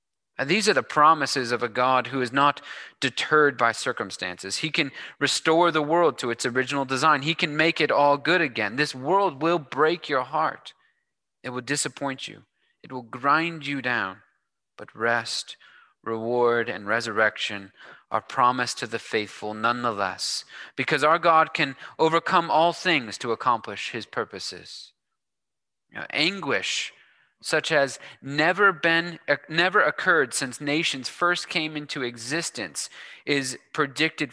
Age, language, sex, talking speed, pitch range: 30-49, English, male, 140 wpm, 125-160 Hz